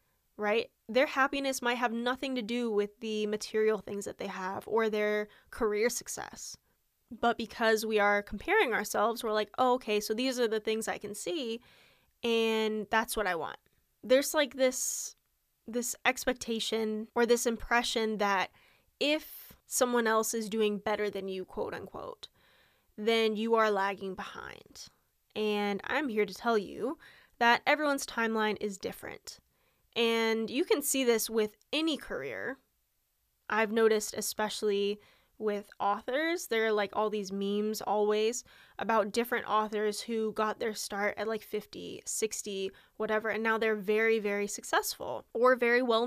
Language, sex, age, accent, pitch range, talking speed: English, female, 10-29, American, 210-250 Hz, 150 wpm